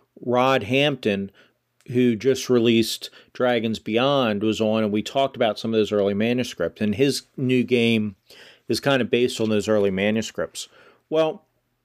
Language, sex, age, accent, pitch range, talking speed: English, male, 40-59, American, 115-145 Hz, 155 wpm